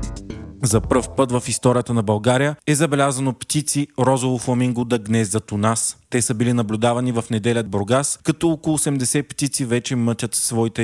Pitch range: 110-130 Hz